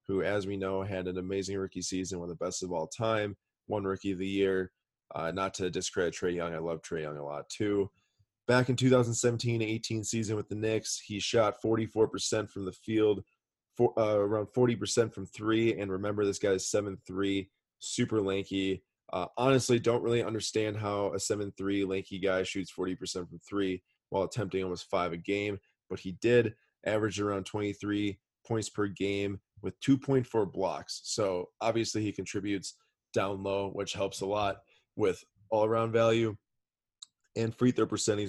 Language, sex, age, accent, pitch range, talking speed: English, male, 20-39, American, 95-110 Hz, 170 wpm